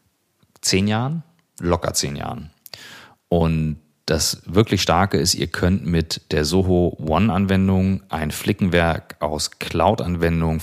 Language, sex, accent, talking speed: German, male, German, 115 wpm